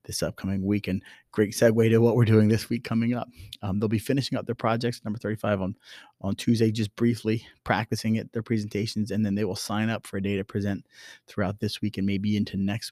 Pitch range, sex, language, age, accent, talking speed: 95-110 Hz, male, English, 30-49, American, 230 wpm